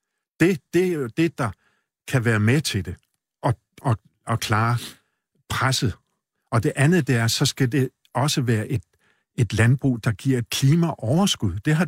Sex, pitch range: male, 110-140 Hz